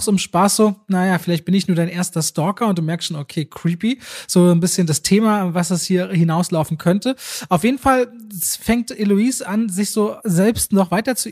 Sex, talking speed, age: male, 205 wpm, 30-49